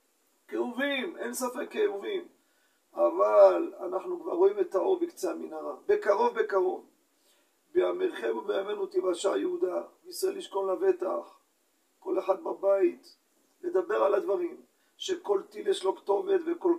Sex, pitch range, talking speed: male, 255-375 Hz, 125 wpm